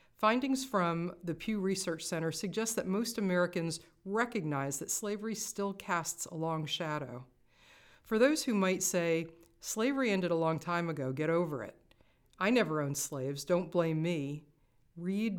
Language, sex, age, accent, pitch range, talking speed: English, female, 50-69, American, 155-190 Hz, 155 wpm